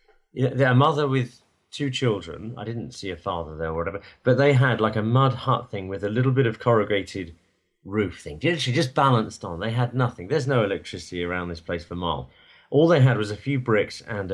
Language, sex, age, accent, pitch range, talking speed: English, male, 30-49, British, 100-125 Hz, 220 wpm